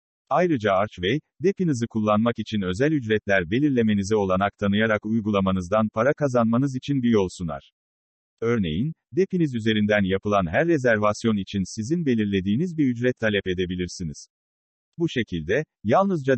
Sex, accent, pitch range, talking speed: male, native, 95-135 Hz, 120 wpm